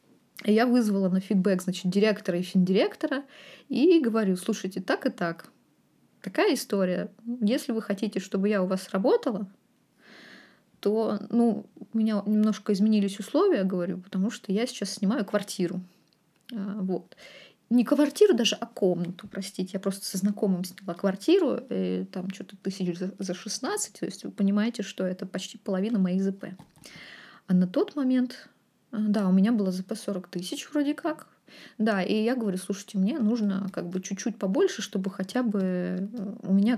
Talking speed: 160 wpm